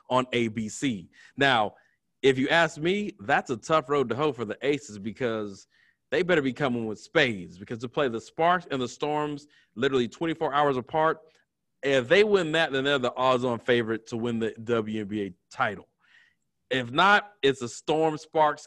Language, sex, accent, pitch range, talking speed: English, male, American, 125-180 Hz, 175 wpm